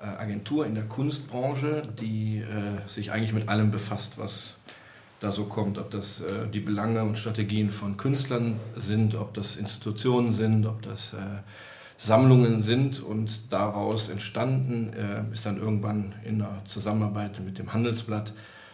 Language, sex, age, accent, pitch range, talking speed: German, male, 40-59, German, 105-115 Hz, 150 wpm